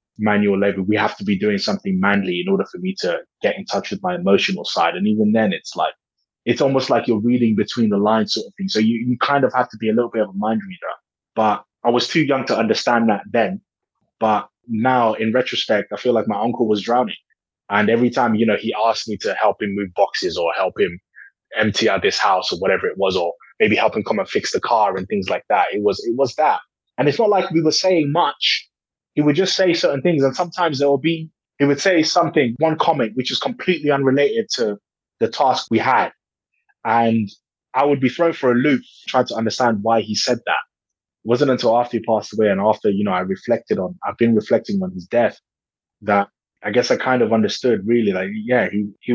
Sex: male